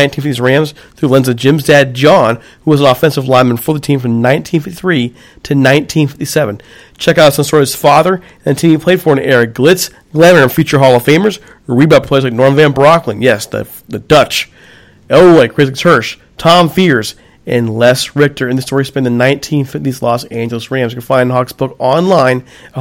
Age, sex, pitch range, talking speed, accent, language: 40-59, male, 125-150 Hz, 205 wpm, American, English